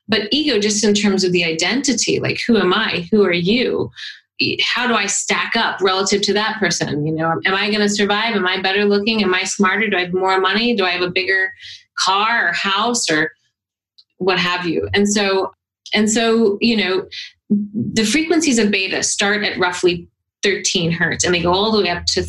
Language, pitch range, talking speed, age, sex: English, 175-210 Hz, 210 wpm, 30-49, female